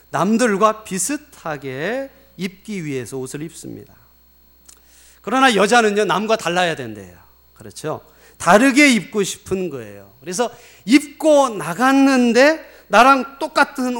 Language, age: Korean, 40-59